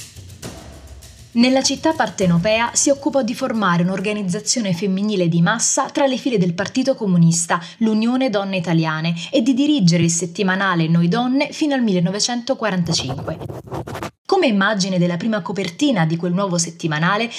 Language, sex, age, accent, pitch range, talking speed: Italian, female, 20-39, native, 180-245 Hz, 135 wpm